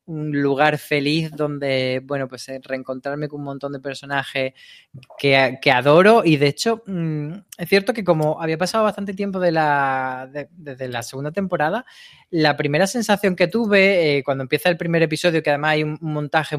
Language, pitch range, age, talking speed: Spanish, 140-180 Hz, 20-39, 170 wpm